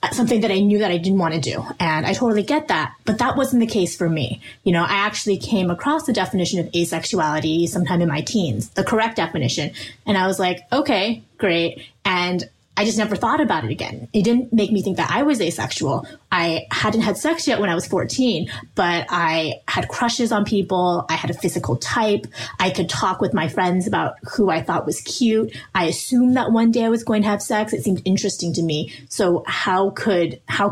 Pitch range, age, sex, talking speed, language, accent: 165-210 Hz, 20-39, female, 225 wpm, English, American